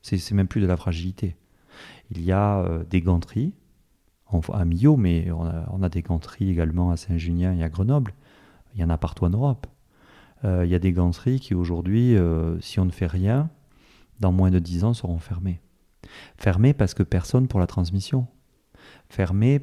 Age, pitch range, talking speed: 40-59, 90-110 Hz, 200 wpm